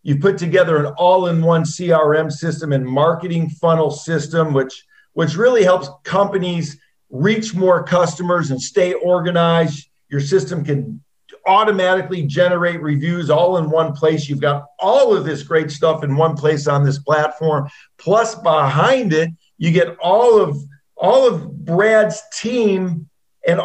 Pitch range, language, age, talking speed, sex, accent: 150-190 Hz, English, 50-69, 145 wpm, male, American